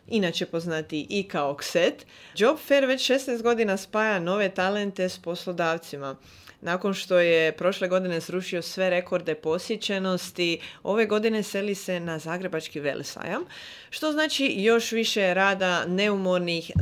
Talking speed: 130 wpm